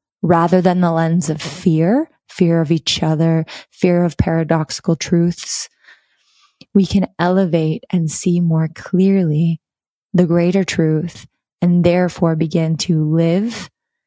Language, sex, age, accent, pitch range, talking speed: English, female, 20-39, American, 155-180 Hz, 125 wpm